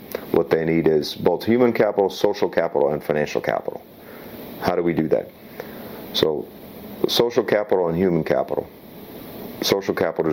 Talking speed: 145 wpm